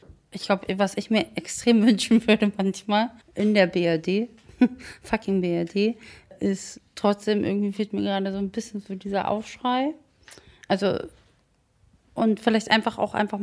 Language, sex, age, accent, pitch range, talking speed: German, female, 20-39, German, 195-230 Hz, 145 wpm